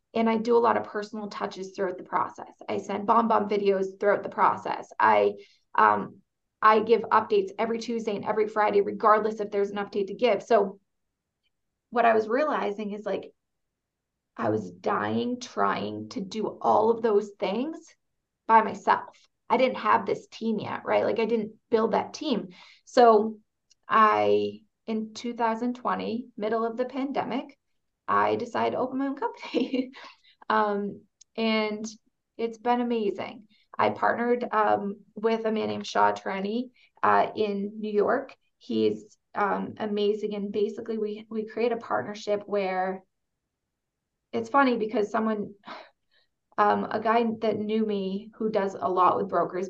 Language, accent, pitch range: English, American, 200-230 Hz